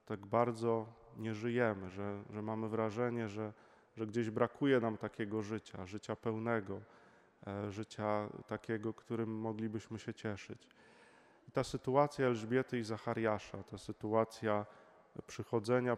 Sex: male